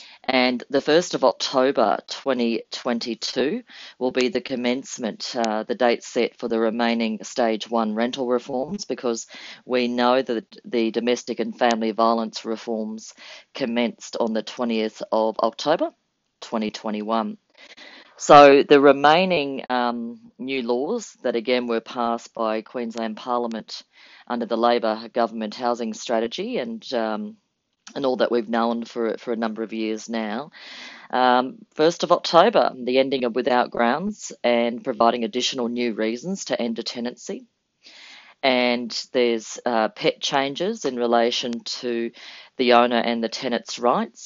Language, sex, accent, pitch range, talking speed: English, female, Australian, 115-135 Hz, 140 wpm